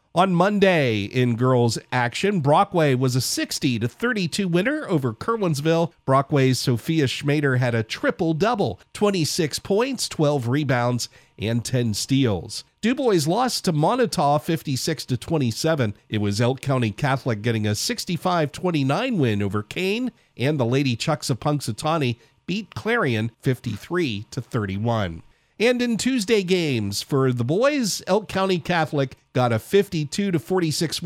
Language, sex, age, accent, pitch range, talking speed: English, male, 50-69, American, 120-180 Hz, 125 wpm